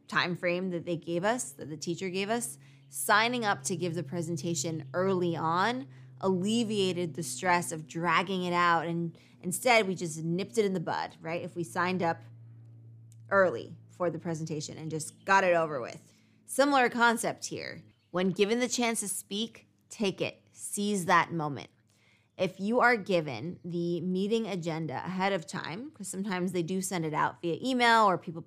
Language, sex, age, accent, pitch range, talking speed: English, female, 20-39, American, 165-205 Hz, 180 wpm